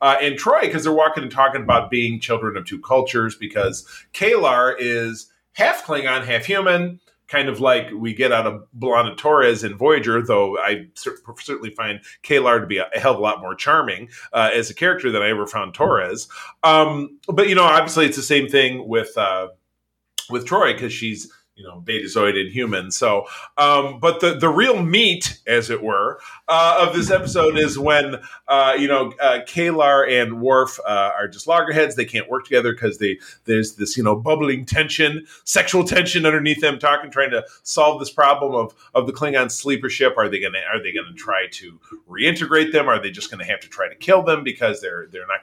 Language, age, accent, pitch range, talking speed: English, 30-49, American, 120-160 Hz, 205 wpm